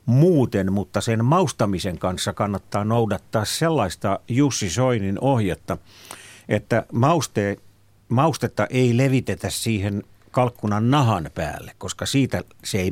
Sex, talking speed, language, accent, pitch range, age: male, 105 wpm, Finnish, native, 95-120 Hz, 50-69